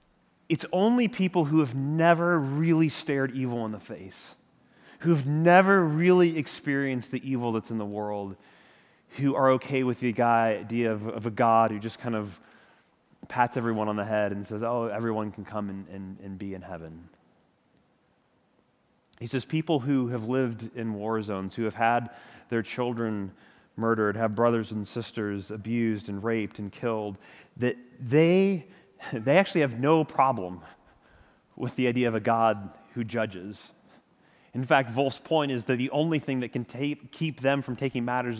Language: English